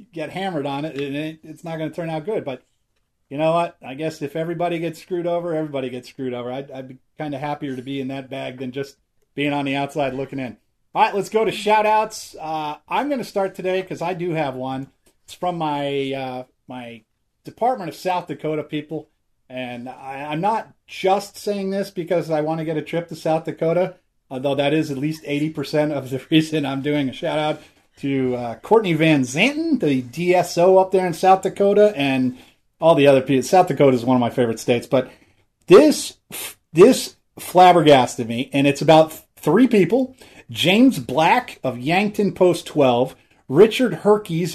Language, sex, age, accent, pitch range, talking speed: English, male, 30-49, American, 140-190 Hz, 200 wpm